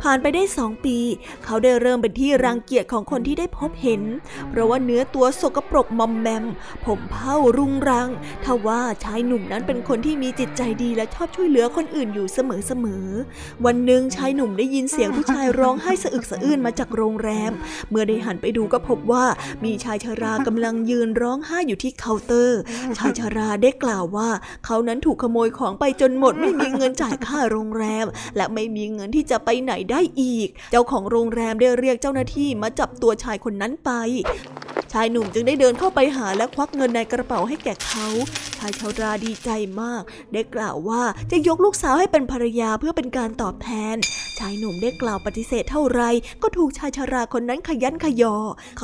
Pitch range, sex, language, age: 225-265 Hz, female, Thai, 20-39